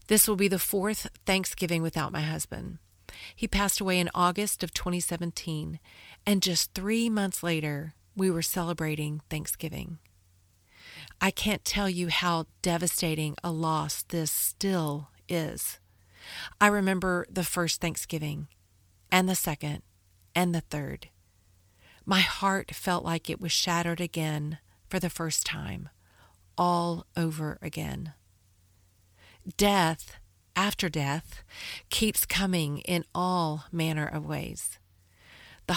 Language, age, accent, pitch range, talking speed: English, 40-59, American, 145-185 Hz, 120 wpm